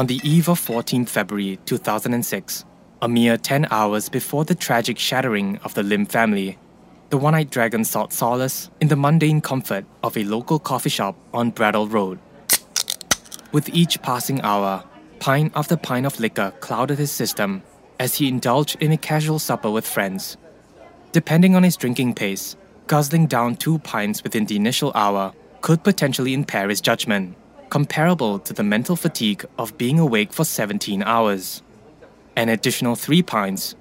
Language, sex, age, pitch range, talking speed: English, male, 20-39, 110-155 Hz, 160 wpm